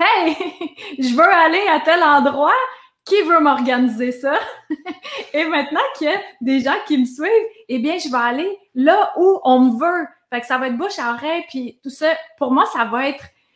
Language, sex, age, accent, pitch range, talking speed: French, female, 20-39, Canadian, 250-330 Hz, 210 wpm